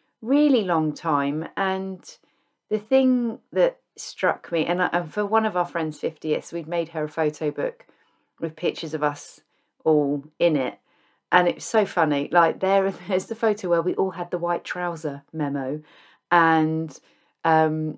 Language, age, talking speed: English, 30-49, 170 wpm